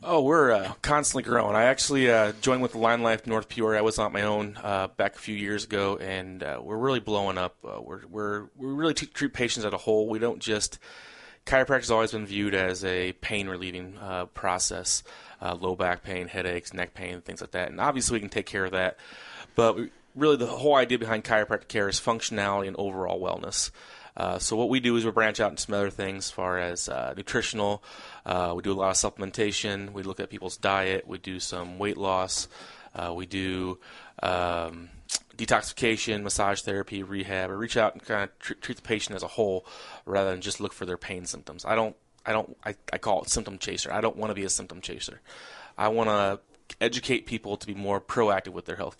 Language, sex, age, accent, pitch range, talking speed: English, male, 30-49, American, 95-110 Hz, 225 wpm